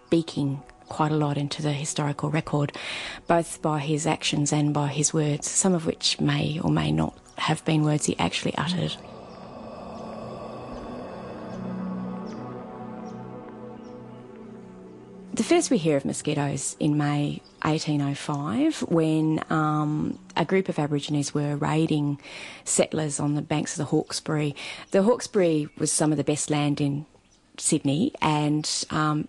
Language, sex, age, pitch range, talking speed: English, female, 30-49, 145-165 Hz, 135 wpm